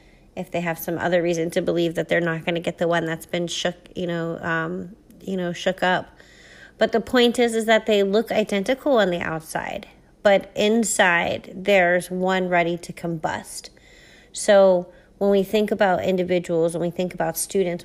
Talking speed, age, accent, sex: 190 wpm, 30-49, American, female